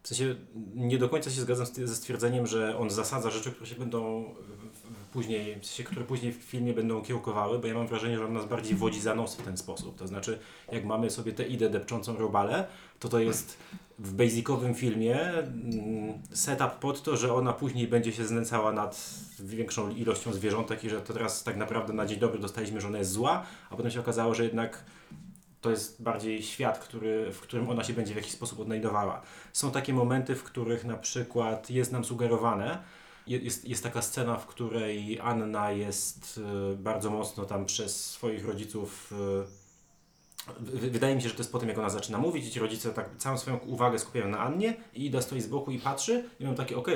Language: Polish